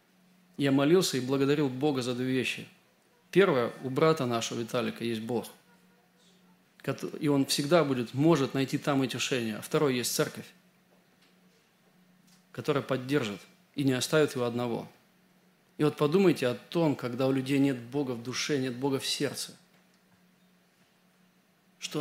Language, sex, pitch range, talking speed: Russian, male, 135-180 Hz, 140 wpm